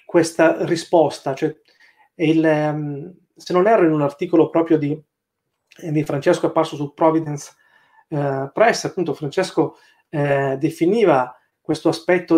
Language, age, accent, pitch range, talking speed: Italian, 30-49, native, 145-175 Hz, 125 wpm